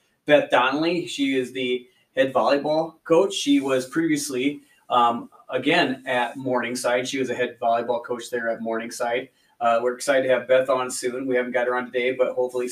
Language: English